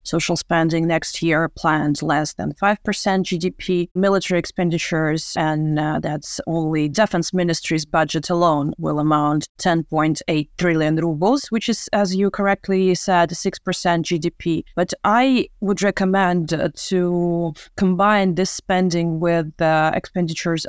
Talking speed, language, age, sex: 130 wpm, English, 30-49, female